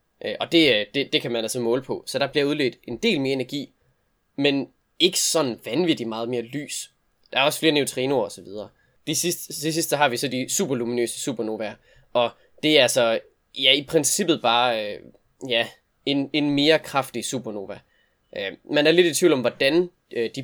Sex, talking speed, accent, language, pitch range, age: male, 180 wpm, native, Danish, 115-150 Hz, 20-39